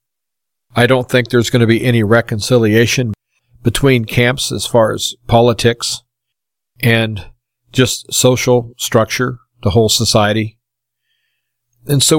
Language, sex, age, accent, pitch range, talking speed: English, male, 50-69, American, 115-125 Hz, 120 wpm